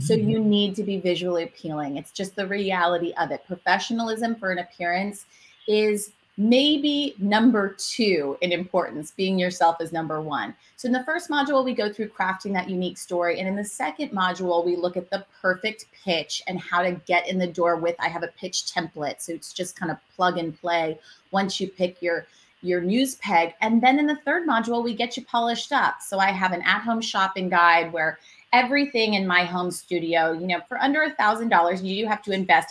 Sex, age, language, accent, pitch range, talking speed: female, 30-49, English, American, 170-220 Hz, 210 wpm